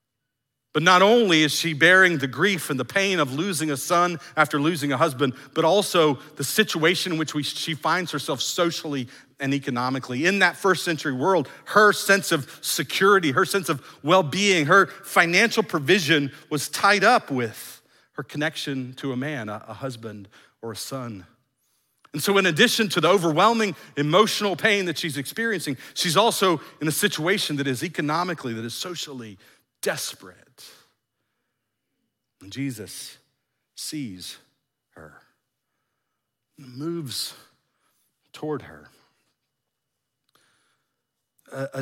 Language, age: English, 40-59